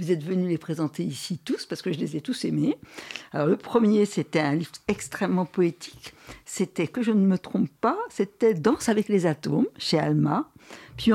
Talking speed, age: 210 wpm, 60-79